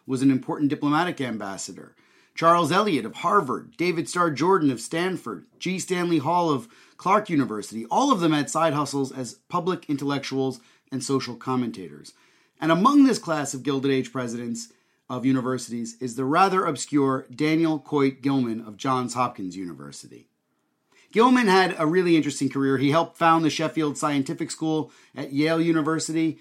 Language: English